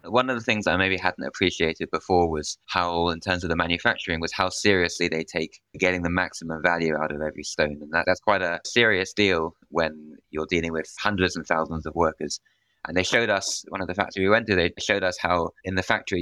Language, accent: English, British